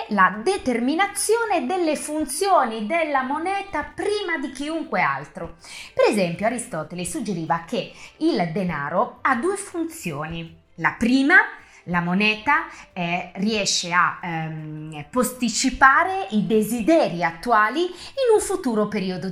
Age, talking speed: 30-49, 110 wpm